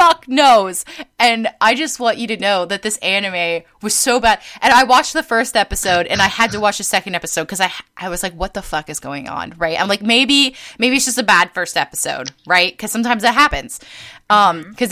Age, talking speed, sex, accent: 20-39, 235 wpm, female, American